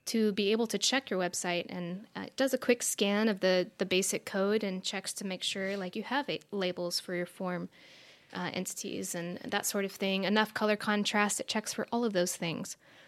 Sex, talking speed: female, 225 wpm